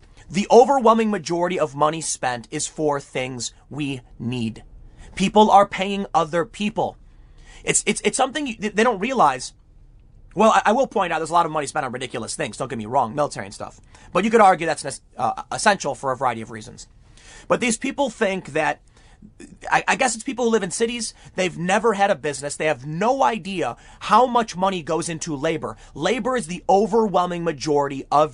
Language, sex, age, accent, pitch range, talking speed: English, male, 30-49, American, 145-225 Hz, 195 wpm